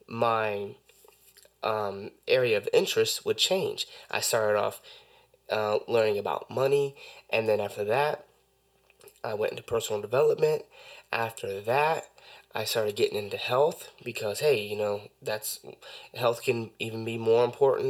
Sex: male